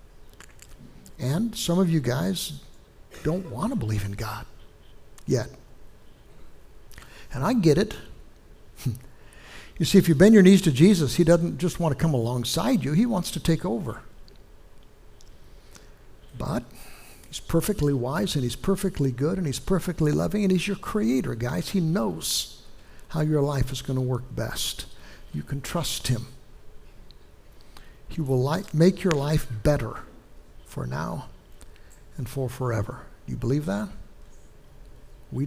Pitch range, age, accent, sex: 115-160 Hz, 60-79, American, male